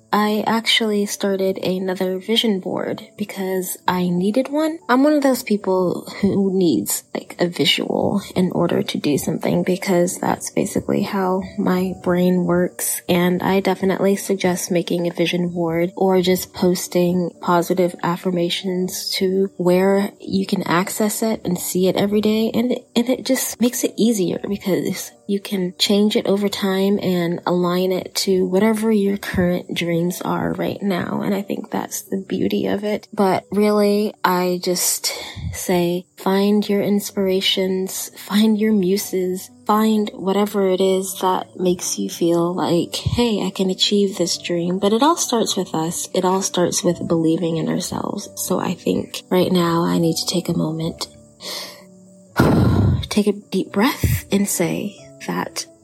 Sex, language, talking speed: female, English, 155 wpm